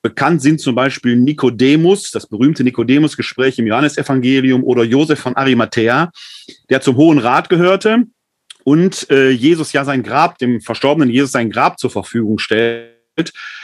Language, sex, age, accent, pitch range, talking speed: German, male, 40-59, German, 120-150 Hz, 145 wpm